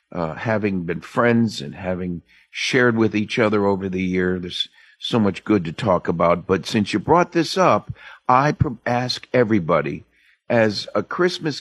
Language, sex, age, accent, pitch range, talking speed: English, male, 50-69, American, 100-135 Hz, 165 wpm